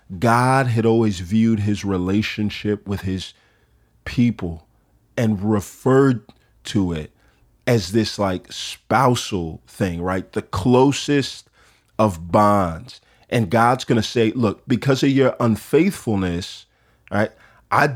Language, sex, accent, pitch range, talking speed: English, male, American, 100-125 Hz, 115 wpm